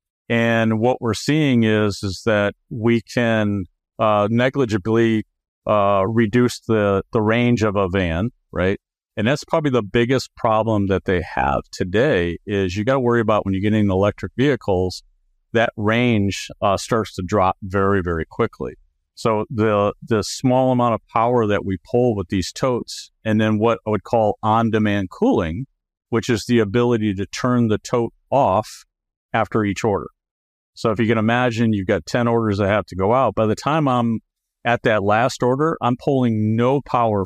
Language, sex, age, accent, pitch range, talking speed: English, male, 50-69, American, 95-120 Hz, 175 wpm